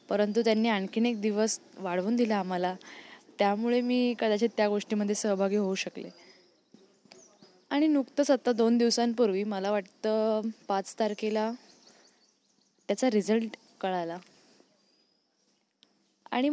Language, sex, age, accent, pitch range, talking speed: Marathi, female, 10-29, native, 200-235 Hz, 105 wpm